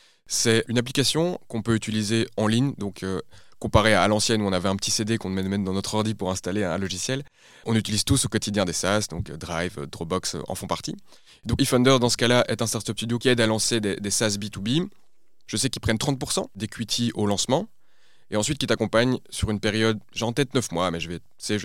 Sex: male